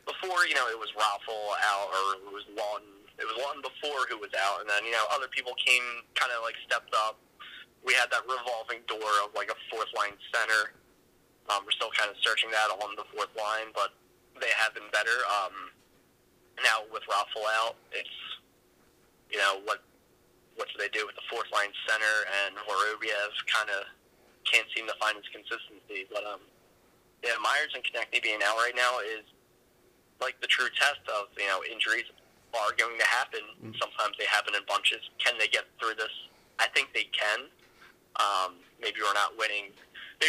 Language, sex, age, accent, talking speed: English, male, 20-39, American, 190 wpm